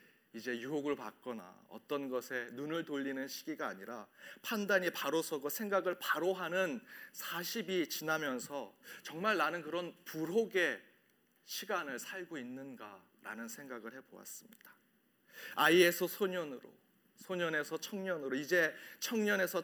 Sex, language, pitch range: male, Korean, 145-205 Hz